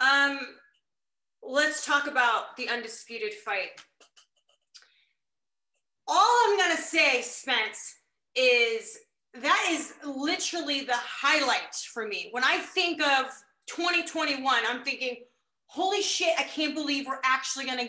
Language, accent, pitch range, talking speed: English, American, 245-305 Hz, 125 wpm